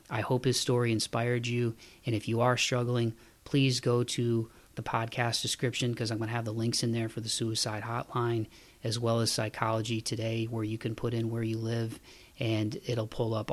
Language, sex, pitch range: English, male, 110-120 Hz